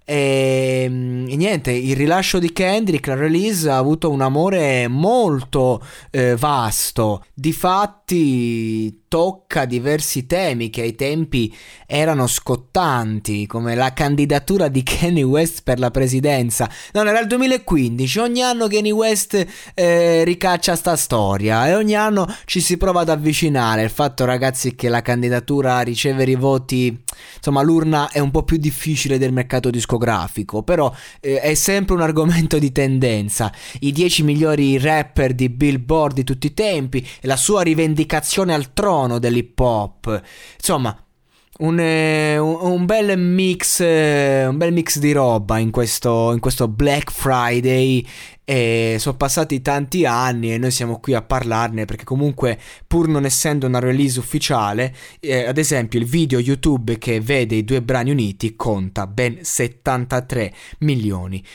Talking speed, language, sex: 145 wpm, Italian, male